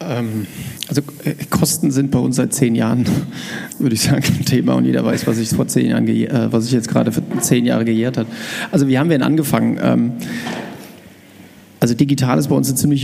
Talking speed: 200 wpm